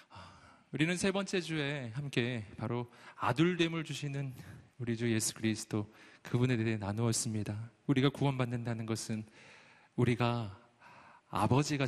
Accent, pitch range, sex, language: native, 110-140 Hz, male, Korean